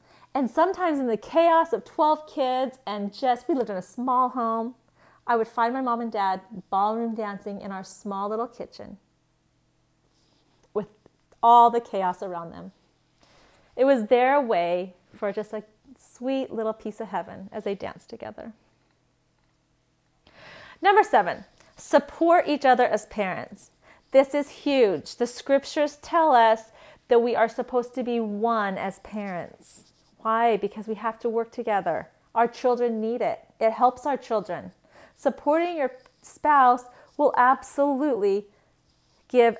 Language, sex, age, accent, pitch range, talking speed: English, female, 30-49, American, 200-255 Hz, 145 wpm